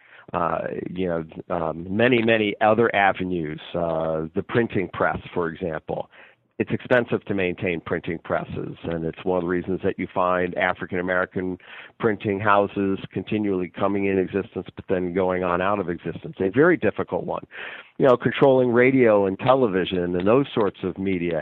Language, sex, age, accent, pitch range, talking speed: English, male, 50-69, American, 85-105 Hz, 160 wpm